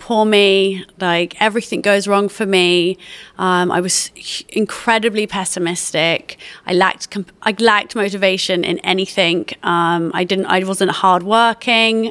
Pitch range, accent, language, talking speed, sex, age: 185-210 Hz, British, English, 145 wpm, female, 30-49